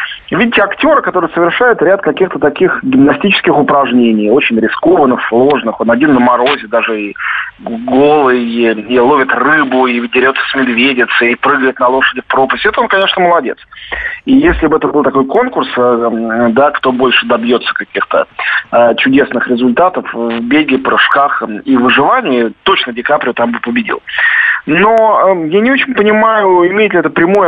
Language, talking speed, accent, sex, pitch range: Russian, 155 wpm, native, male, 125-205 Hz